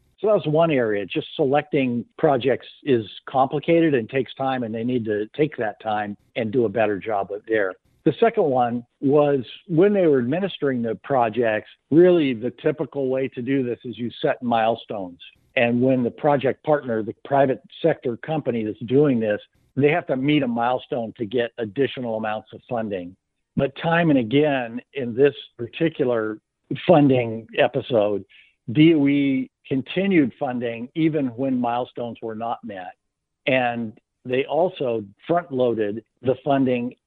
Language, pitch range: English, 115-140 Hz